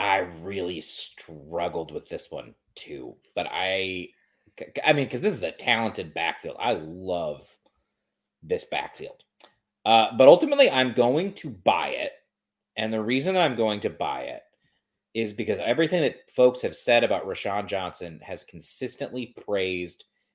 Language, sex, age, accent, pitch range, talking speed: English, male, 30-49, American, 105-175 Hz, 150 wpm